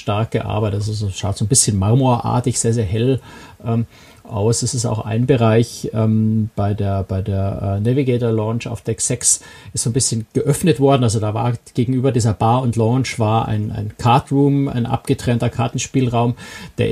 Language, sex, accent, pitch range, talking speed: German, male, German, 110-125 Hz, 180 wpm